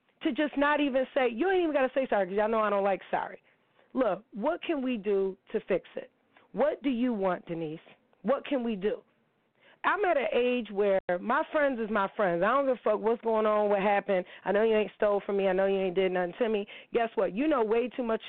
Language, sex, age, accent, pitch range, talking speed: English, female, 30-49, American, 205-255 Hz, 255 wpm